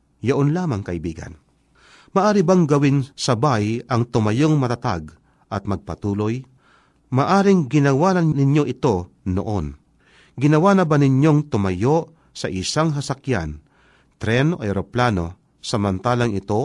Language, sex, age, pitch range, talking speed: Filipino, male, 40-59, 105-155 Hz, 110 wpm